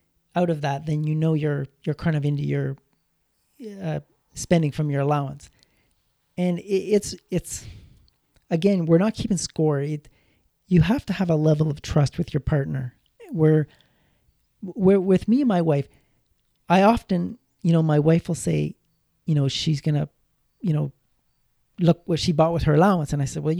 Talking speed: 175 wpm